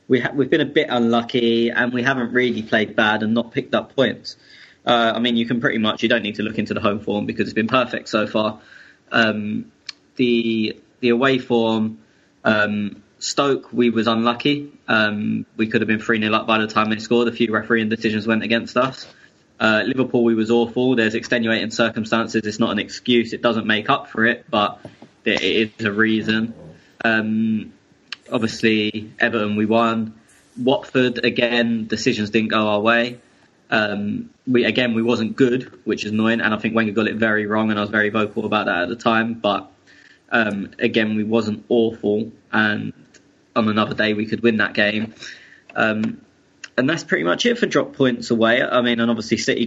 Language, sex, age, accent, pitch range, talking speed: English, male, 20-39, British, 110-120 Hz, 195 wpm